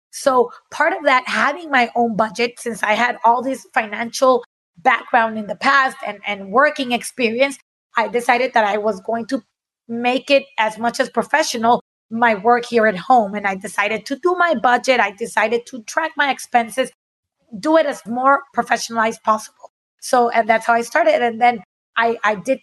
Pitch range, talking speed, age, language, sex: 220-260 Hz, 190 wpm, 20-39, English, female